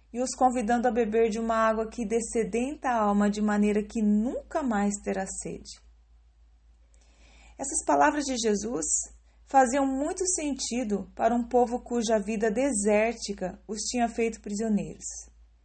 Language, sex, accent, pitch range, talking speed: Portuguese, female, Brazilian, 195-250 Hz, 140 wpm